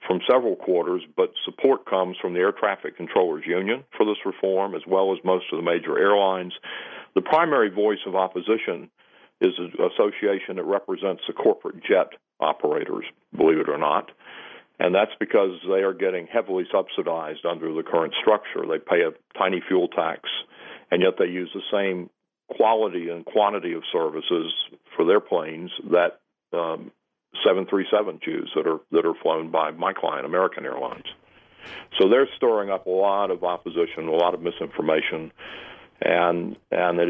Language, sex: English, male